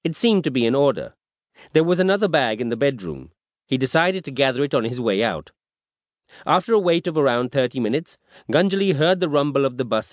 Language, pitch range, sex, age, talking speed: English, 120-155 Hz, male, 40-59, 215 wpm